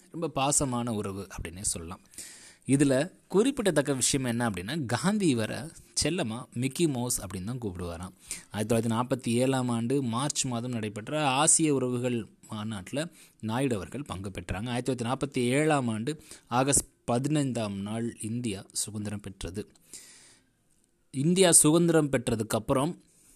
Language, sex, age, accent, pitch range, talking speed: Tamil, male, 20-39, native, 105-140 Hz, 105 wpm